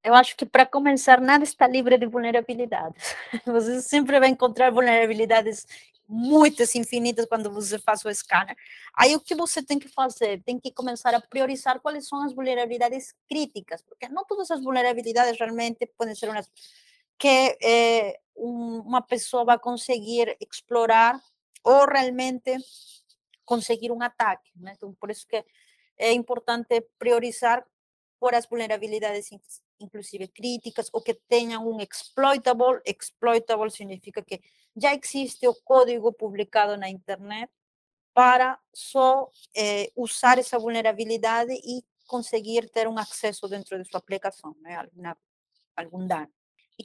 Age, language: 30-49, Portuguese